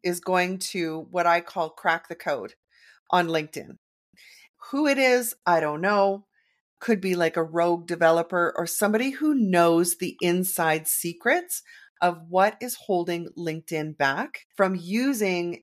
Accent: American